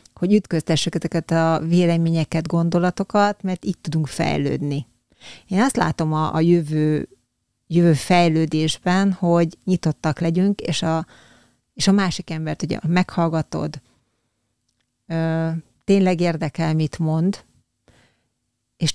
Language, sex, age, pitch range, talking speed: Hungarian, female, 30-49, 155-185 Hz, 115 wpm